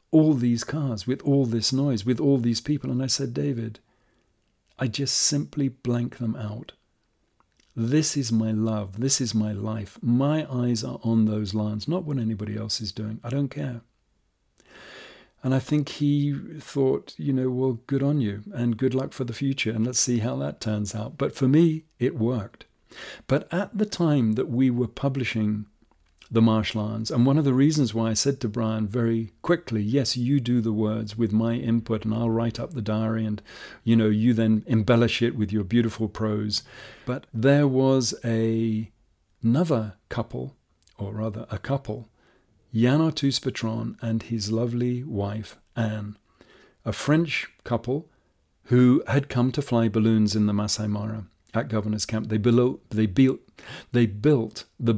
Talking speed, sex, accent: 175 wpm, male, British